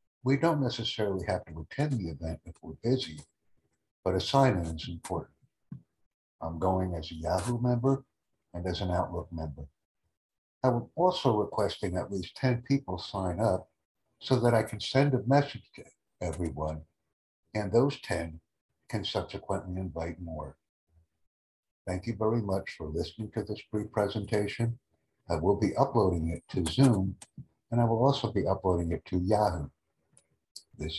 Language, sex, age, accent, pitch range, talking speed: English, male, 60-79, American, 80-110 Hz, 155 wpm